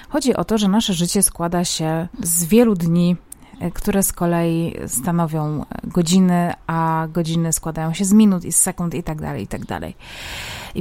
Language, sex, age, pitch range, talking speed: Polish, female, 30-49, 170-200 Hz, 180 wpm